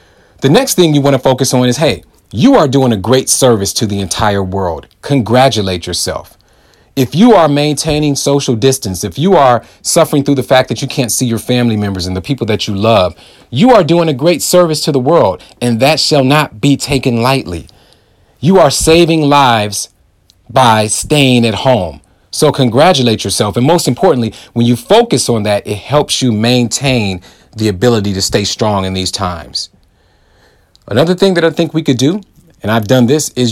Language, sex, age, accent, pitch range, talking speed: English, male, 40-59, American, 105-150 Hz, 195 wpm